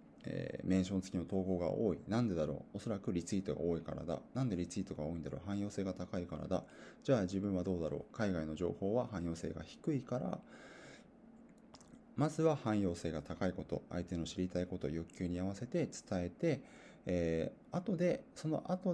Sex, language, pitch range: male, Japanese, 85-110 Hz